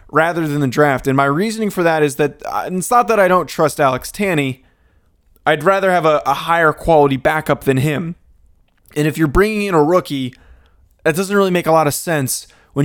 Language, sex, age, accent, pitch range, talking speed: English, male, 20-39, American, 130-160 Hz, 210 wpm